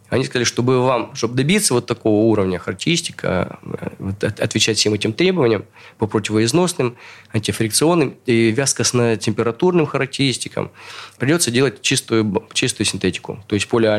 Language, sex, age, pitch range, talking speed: Russian, male, 20-39, 105-140 Hz, 120 wpm